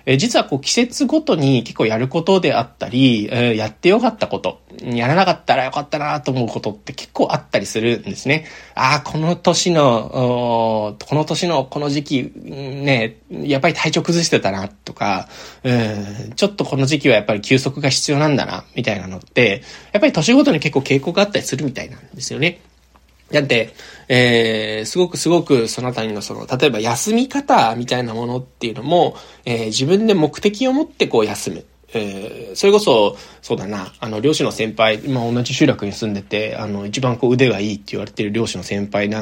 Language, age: Japanese, 20-39